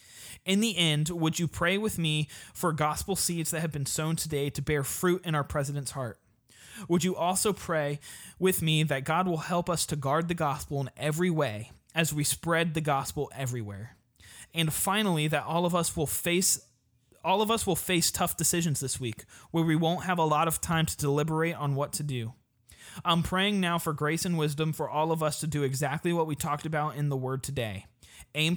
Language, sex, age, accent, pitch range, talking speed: English, male, 20-39, American, 130-170 Hz, 210 wpm